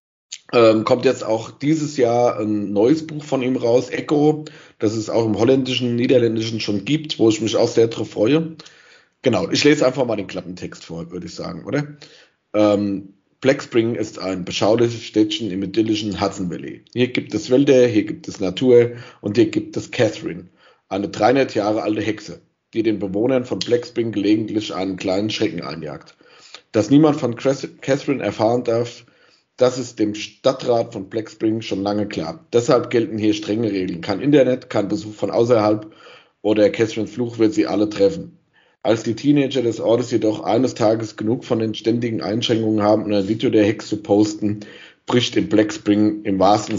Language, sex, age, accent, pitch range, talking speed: German, male, 50-69, German, 105-135 Hz, 180 wpm